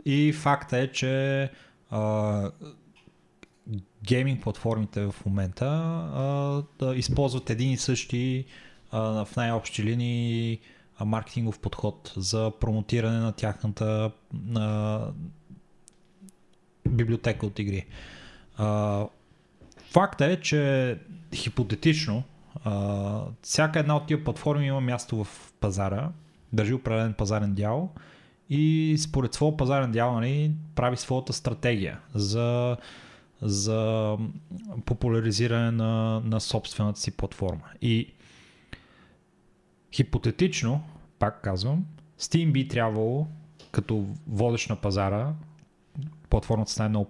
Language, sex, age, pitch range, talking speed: Bulgarian, male, 20-39, 110-145 Hz, 100 wpm